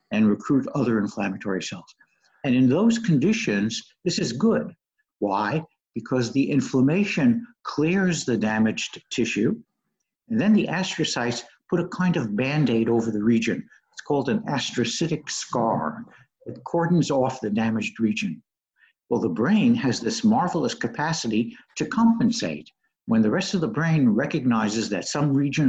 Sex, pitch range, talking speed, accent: male, 115-170 Hz, 145 wpm, American